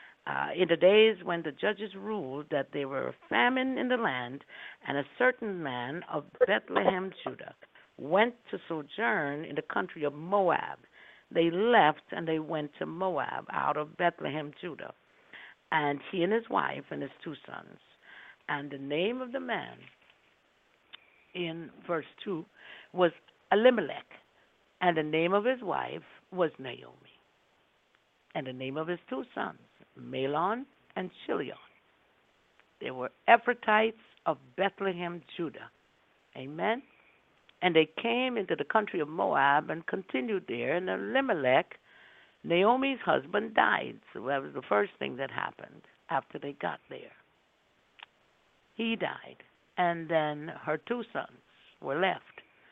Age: 60-79